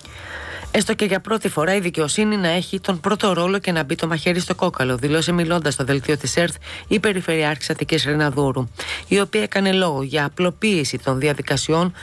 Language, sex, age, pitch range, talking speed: Greek, female, 30-49, 145-185 Hz, 185 wpm